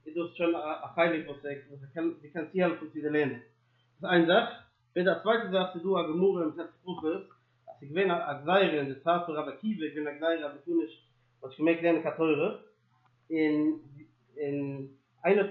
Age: 30-49